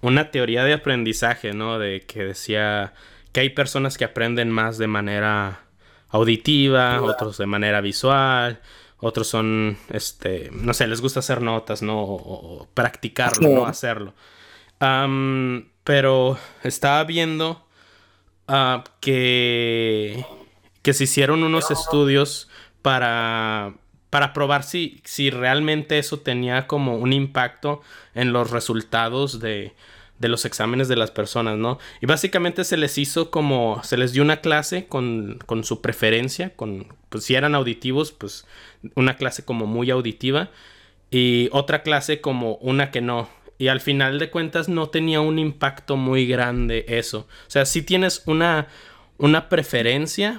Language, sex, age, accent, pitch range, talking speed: Spanish, male, 20-39, Mexican, 110-140 Hz, 145 wpm